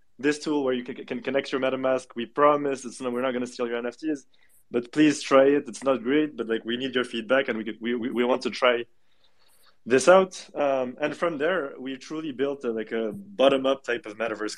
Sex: male